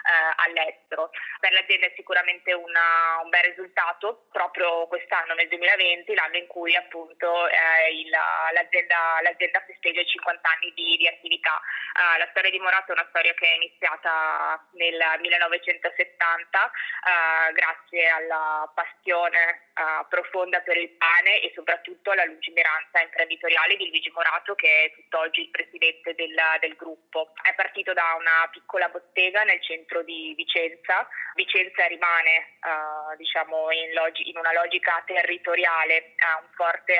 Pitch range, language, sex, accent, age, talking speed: 160-180 Hz, Italian, female, native, 20-39, 145 wpm